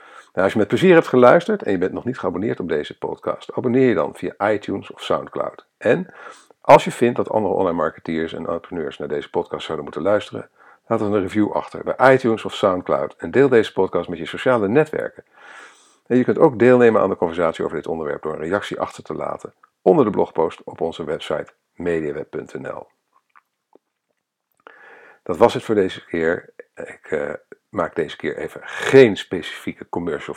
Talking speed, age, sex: 190 wpm, 50-69, male